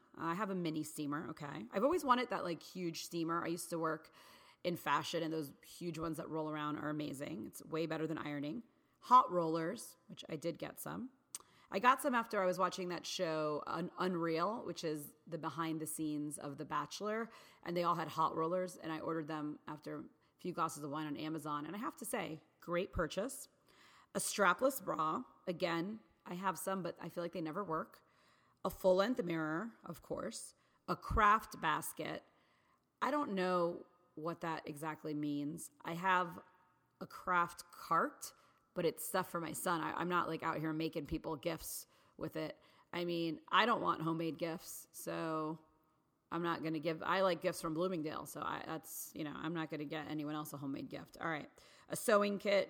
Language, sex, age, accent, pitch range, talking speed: English, female, 30-49, American, 155-185 Hz, 195 wpm